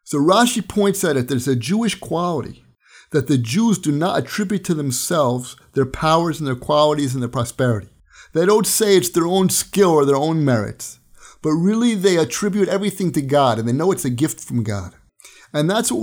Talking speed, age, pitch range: 200 wpm, 50-69, 150-205 Hz